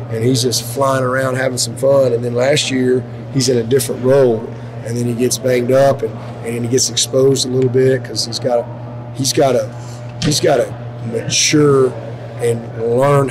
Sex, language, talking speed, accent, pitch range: male, English, 200 wpm, American, 120-135 Hz